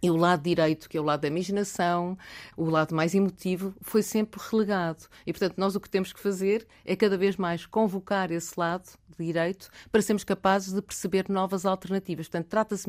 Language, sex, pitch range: Portuguese, female, 165-195 Hz